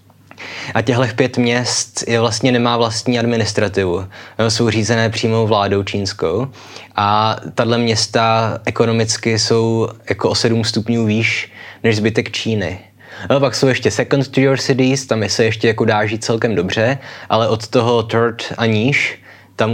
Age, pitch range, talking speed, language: 20-39, 110-120 Hz, 160 wpm, Czech